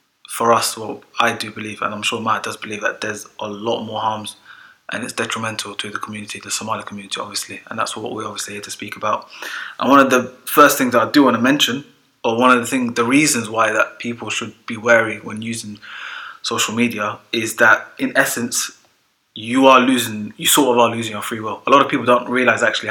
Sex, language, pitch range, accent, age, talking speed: male, English, 110-120 Hz, British, 20-39, 235 wpm